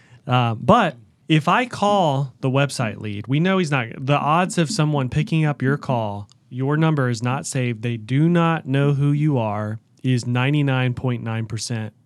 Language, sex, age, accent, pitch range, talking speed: English, male, 30-49, American, 120-150 Hz, 170 wpm